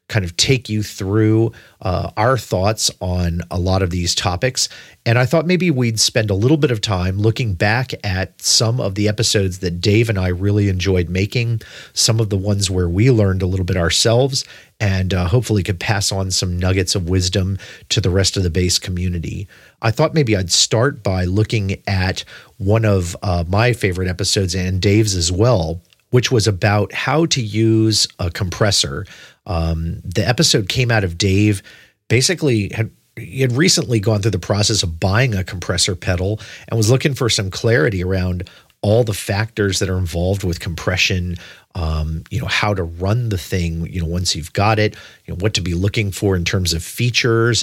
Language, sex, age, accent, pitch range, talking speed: English, male, 40-59, American, 95-115 Hz, 195 wpm